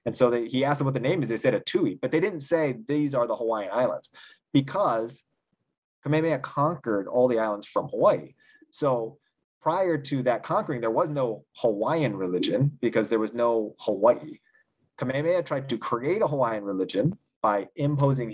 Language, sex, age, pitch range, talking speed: English, male, 30-49, 110-145 Hz, 175 wpm